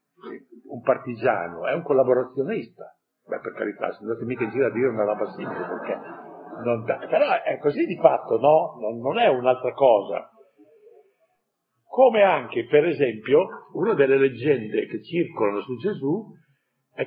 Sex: male